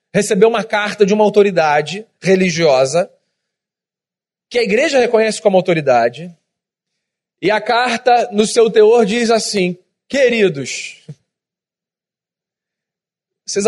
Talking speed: 100 wpm